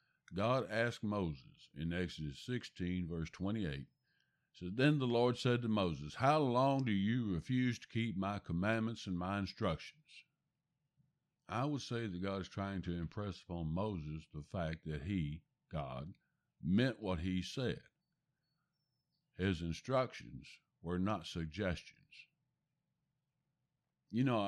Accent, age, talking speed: American, 60-79, 130 wpm